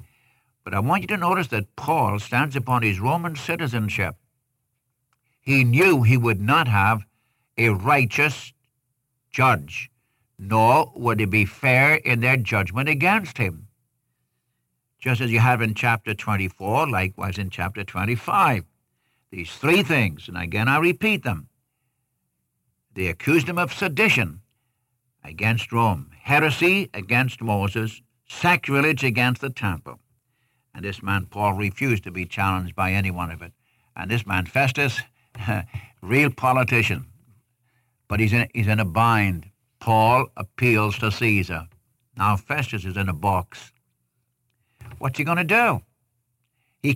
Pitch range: 105-130 Hz